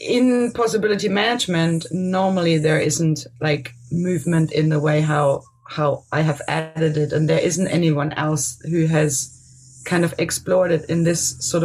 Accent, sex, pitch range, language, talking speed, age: German, female, 145-170 Hz, English, 160 wpm, 30-49